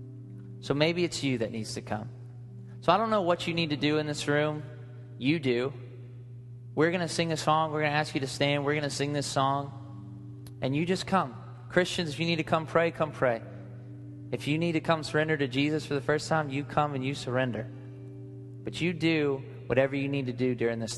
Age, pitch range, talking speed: 20-39, 120-145 Hz, 230 wpm